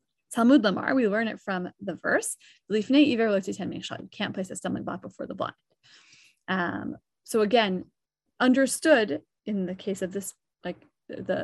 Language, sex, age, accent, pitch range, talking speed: English, female, 30-49, American, 200-295 Hz, 145 wpm